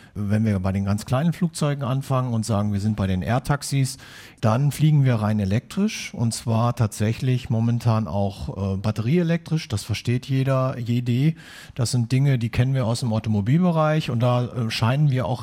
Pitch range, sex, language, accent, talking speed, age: 110-135 Hz, male, German, German, 175 wpm, 50-69